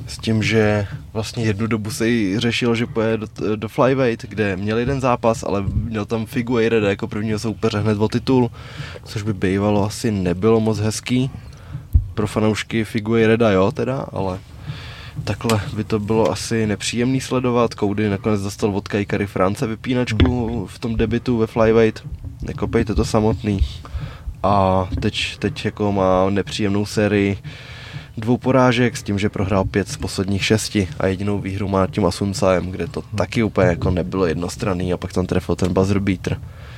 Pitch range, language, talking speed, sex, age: 100-115 Hz, Czech, 160 wpm, male, 20-39